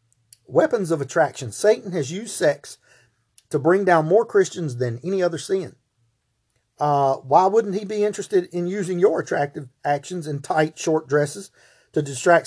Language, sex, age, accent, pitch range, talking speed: English, male, 40-59, American, 130-180 Hz, 160 wpm